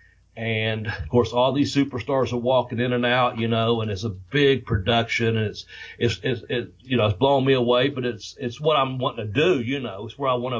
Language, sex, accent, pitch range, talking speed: English, male, American, 105-140 Hz, 250 wpm